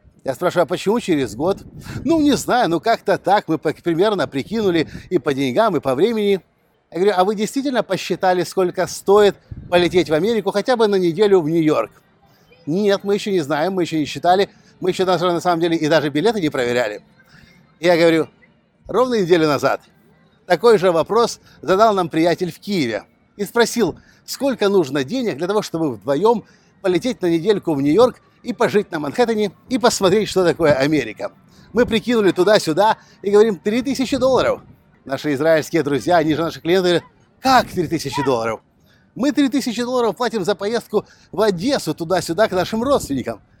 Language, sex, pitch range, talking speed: Russian, male, 165-225 Hz, 170 wpm